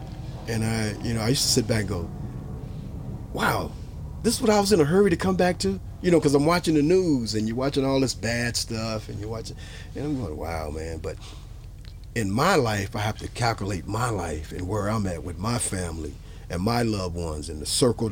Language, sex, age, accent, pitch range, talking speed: English, male, 40-59, American, 100-130 Hz, 230 wpm